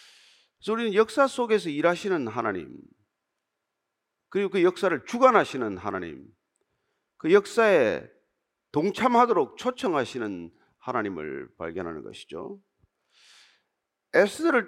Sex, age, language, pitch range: male, 40-59, Korean, 170-260 Hz